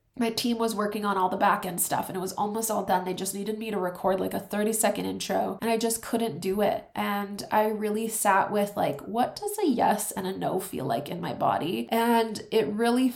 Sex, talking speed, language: female, 245 wpm, English